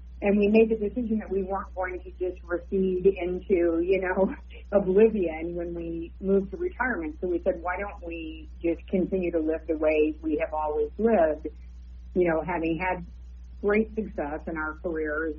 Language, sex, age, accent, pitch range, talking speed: English, female, 40-59, American, 155-195 Hz, 180 wpm